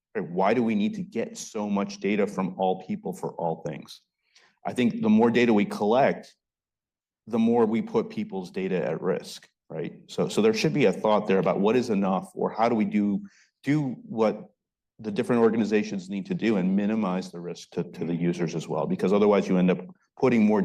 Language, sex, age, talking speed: English, male, 30-49, 210 wpm